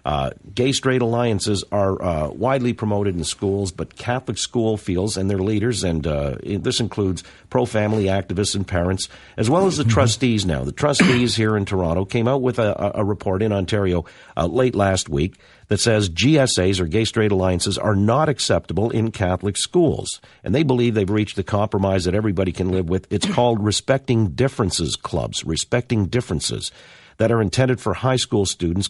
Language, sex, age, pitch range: English, male, 50-69, 95-120 Hz